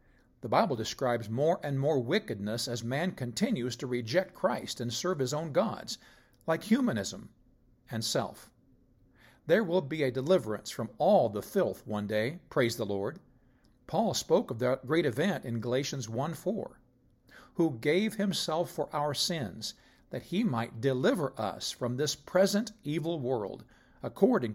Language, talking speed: English, 155 wpm